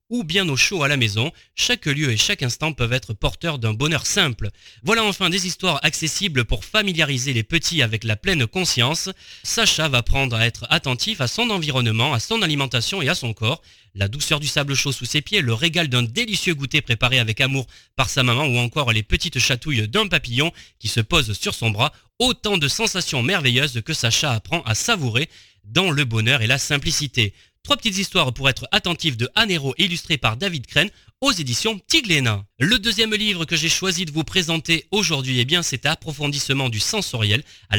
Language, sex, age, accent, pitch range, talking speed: French, male, 30-49, French, 120-170 Hz, 200 wpm